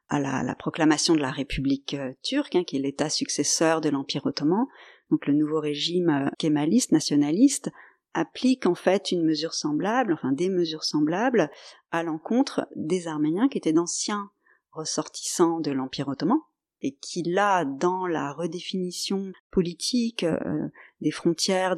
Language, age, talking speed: French, 40-59, 150 wpm